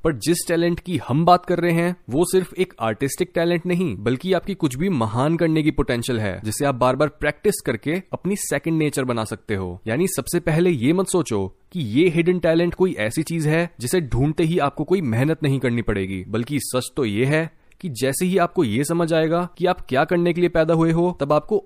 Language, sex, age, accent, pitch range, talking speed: Hindi, male, 20-39, native, 130-175 Hz, 225 wpm